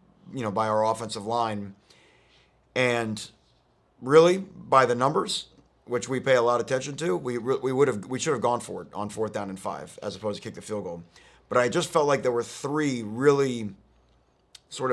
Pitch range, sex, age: 110-130 Hz, male, 30-49